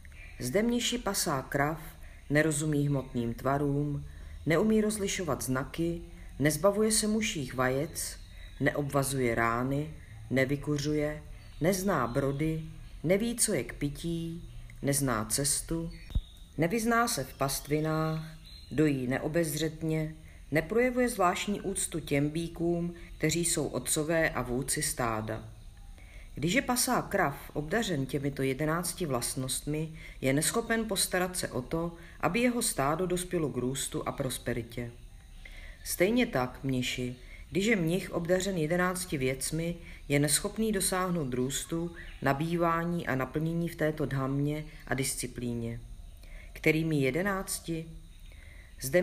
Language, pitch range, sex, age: Czech, 125-170 Hz, female, 40-59